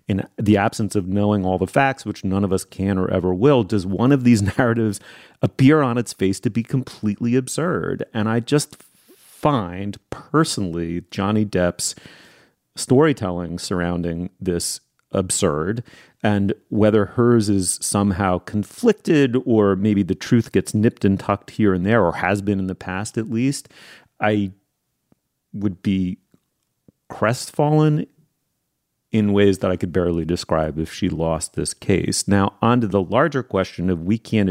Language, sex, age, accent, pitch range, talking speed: English, male, 30-49, American, 95-120 Hz, 155 wpm